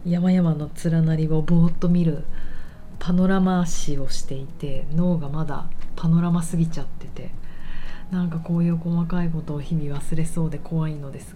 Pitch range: 155-180 Hz